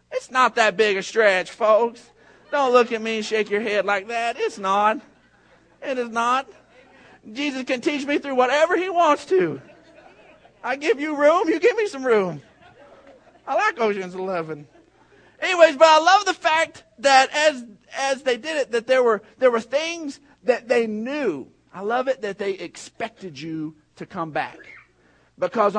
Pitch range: 215-285 Hz